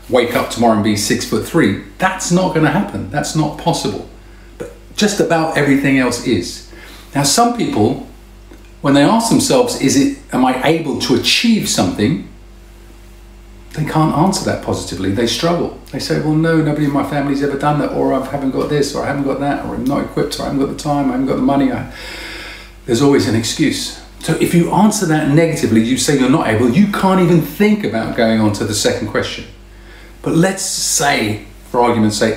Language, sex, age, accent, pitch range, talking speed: English, male, 40-59, British, 115-165 Hz, 210 wpm